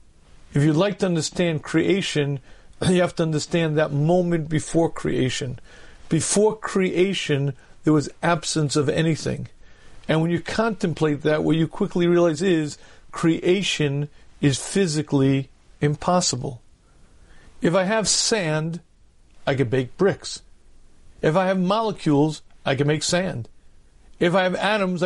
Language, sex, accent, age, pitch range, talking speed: English, male, American, 50-69, 145-185 Hz, 130 wpm